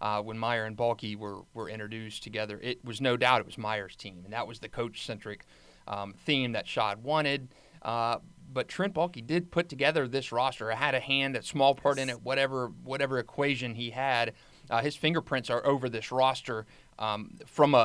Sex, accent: male, American